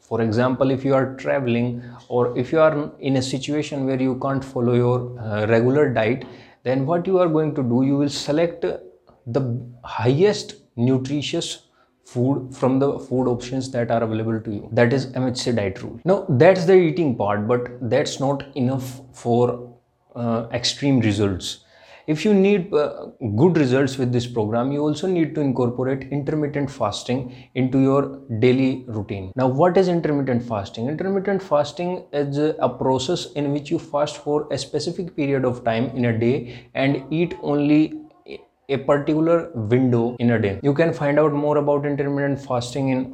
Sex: male